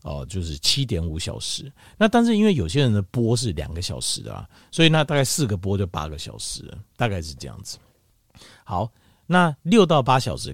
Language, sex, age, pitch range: Chinese, male, 50-69, 90-140 Hz